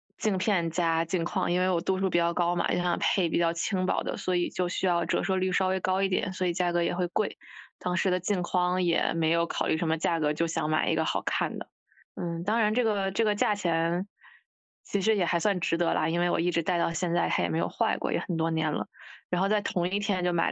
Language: Chinese